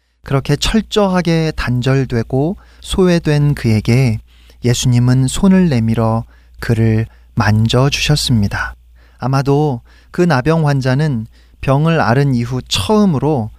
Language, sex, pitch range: Korean, male, 115-150 Hz